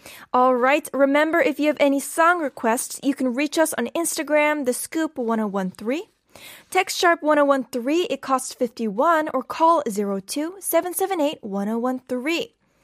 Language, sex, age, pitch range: Korean, female, 10-29, 240-305 Hz